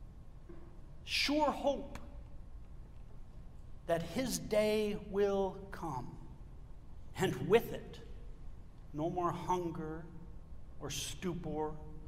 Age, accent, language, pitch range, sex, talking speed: 60-79, American, English, 170-230 Hz, male, 75 wpm